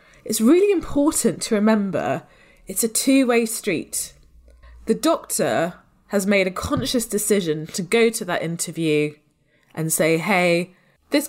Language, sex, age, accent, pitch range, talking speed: English, female, 20-39, British, 175-230 Hz, 140 wpm